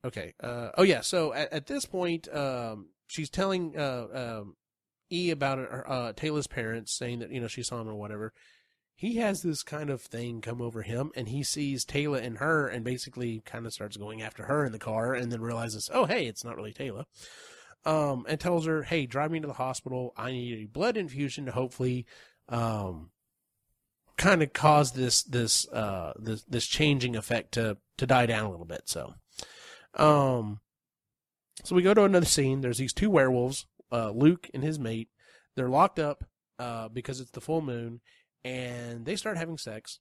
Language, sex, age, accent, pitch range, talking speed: English, male, 30-49, American, 115-145 Hz, 190 wpm